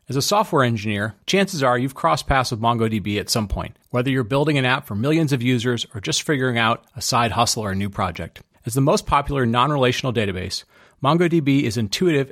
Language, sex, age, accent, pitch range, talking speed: English, male, 30-49, American, 120-145 Hz, 210 wpm